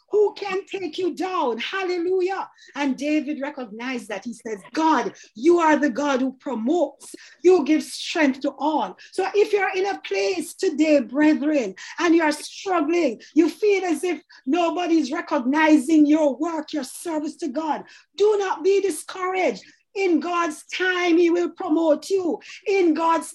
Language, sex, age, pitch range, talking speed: English, female, 40-59, 300-360 Hz, 155 wpm